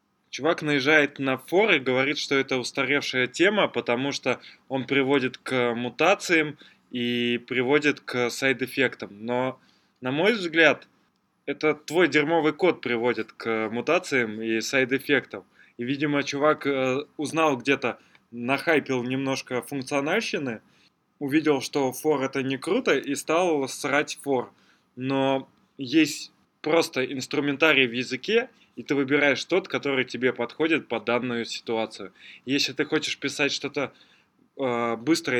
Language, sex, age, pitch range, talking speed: Russian, male, 20-39, 120-145 Hz, 125 wpm